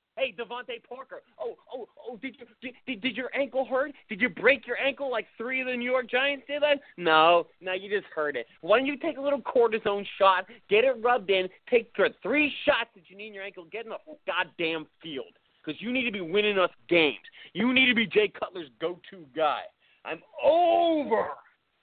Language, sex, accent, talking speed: English, male, American, 210 wpm